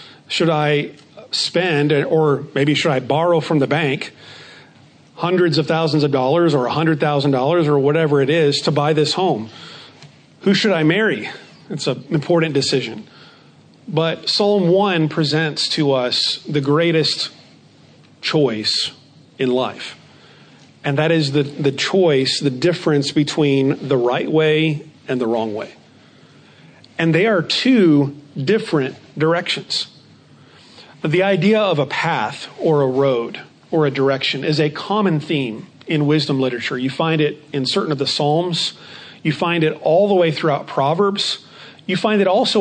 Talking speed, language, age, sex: 150 wpm, English, 40-59, male